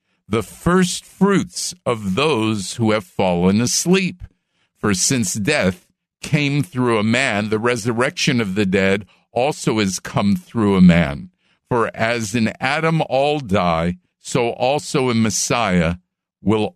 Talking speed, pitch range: 135 wpm, 105-165 Hz